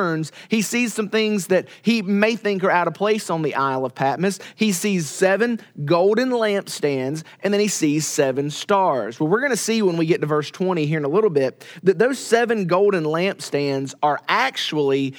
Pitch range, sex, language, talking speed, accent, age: 150-200 Hz, male, English, 200 wpm, American, 30-49